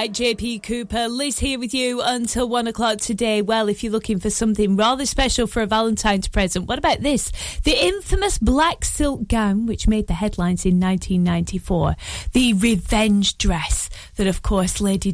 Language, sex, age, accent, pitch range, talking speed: English, female, 30-49, British, 195-250 Hz, 175 wpm